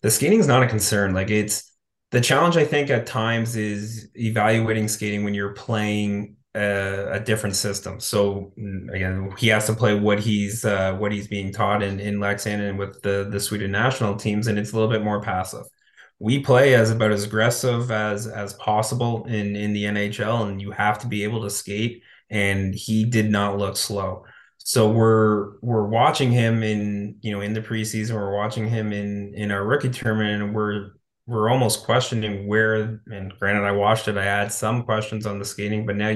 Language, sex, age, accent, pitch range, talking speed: English, male, 20-39, American, 100-110 Hz, 200 wpm